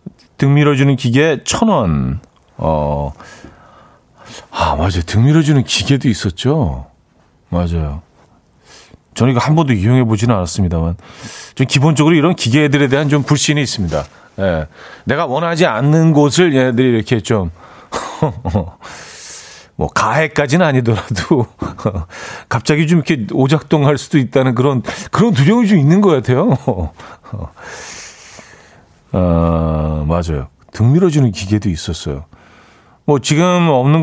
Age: 40-59